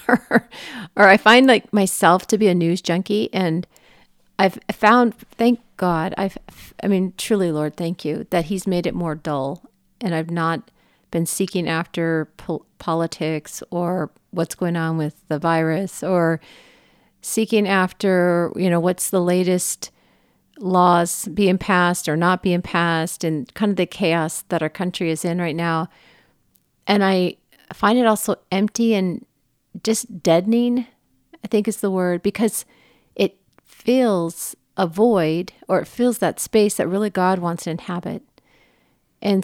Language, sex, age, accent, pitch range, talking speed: English, female, 50-69, American, 170-205 Hz, 150 wpm